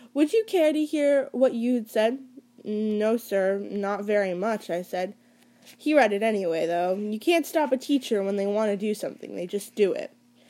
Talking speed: 200 wpm